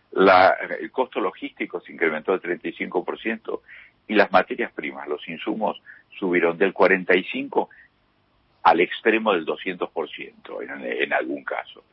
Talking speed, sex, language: 125 wpm, male, Spanish